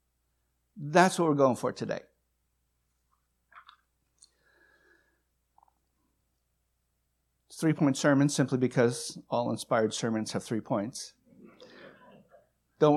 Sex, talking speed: male, 80 wpm